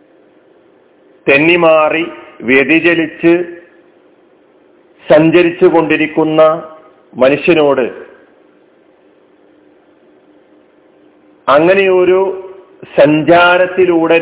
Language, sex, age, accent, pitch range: Malayalam, male, 40-59, native, 160-185 Hz